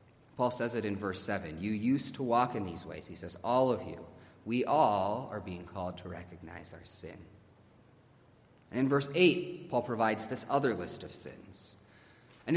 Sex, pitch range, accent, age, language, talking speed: male, 95-125 Hz, American, 30-49, English, 185 wpm